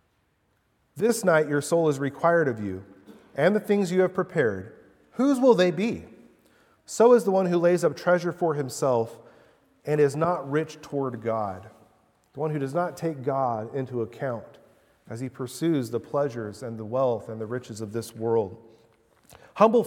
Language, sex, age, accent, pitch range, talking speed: English, male, 40-59, American, 120-170 Hz, 175 wpm